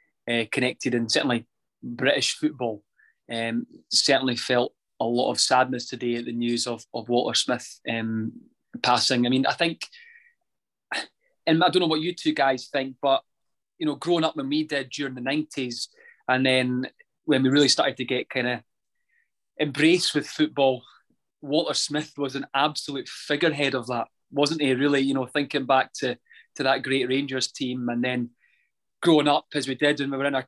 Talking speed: 185 wpm